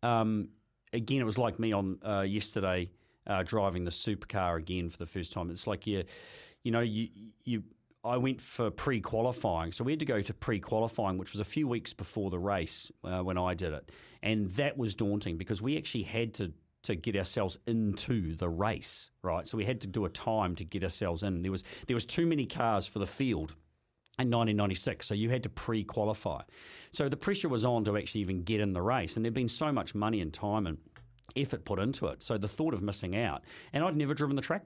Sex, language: male, English